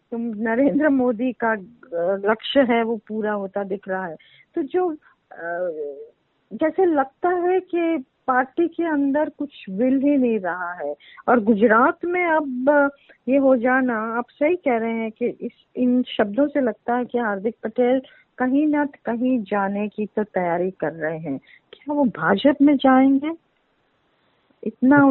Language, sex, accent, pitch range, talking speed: Hindi, female, native, 210-275 Hz, 160 wpm